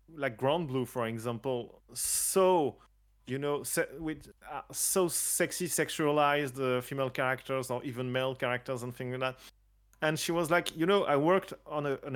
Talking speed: 180 wpm